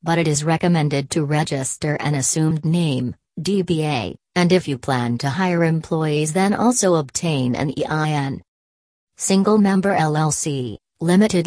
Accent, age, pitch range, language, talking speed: American, 40-59, 145-175 Hz, English, 135 wpm